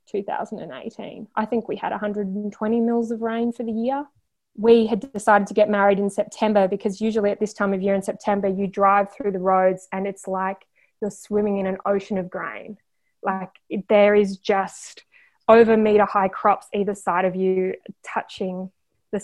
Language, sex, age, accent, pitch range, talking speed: English, female, 20-39, Australian, 195-235 Hz, 180 wpm